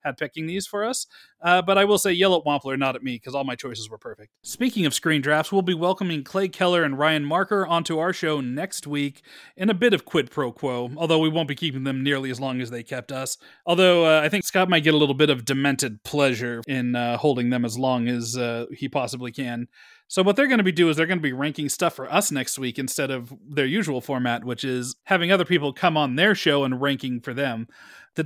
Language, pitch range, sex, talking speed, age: English, 130-165 Hz, male, 255 wpm, 30-49